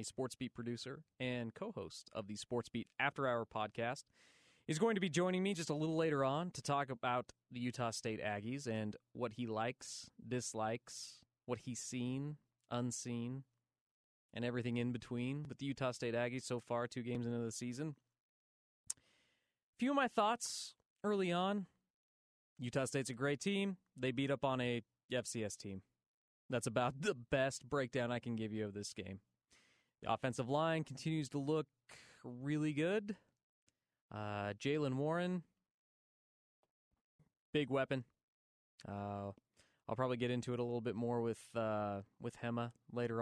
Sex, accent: male, American